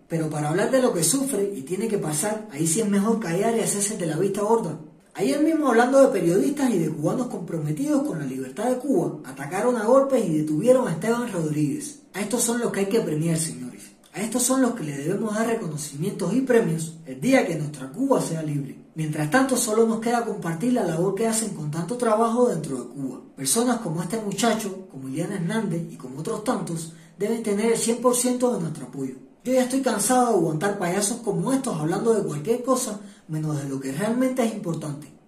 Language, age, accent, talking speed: Spanish, 20-39, American, 215 wpm